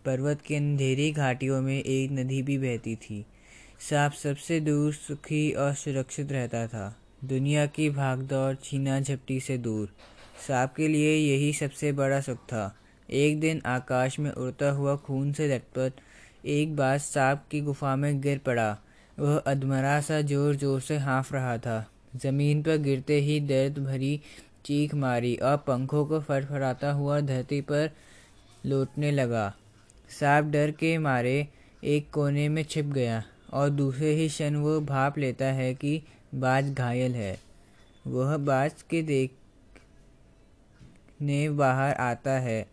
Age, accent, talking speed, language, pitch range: 20-39, native, 145 wpm, Hindi, 125-145 Hz